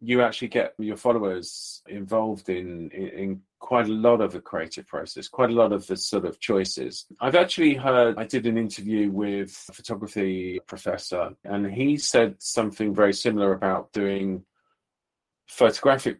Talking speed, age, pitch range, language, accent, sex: 165 wpm, 40-59, 100-125 Hz, English, British, male